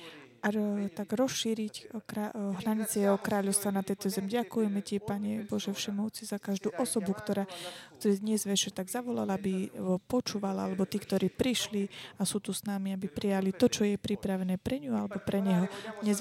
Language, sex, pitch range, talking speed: Slovak, female, 190-215 Hz, 165 wpm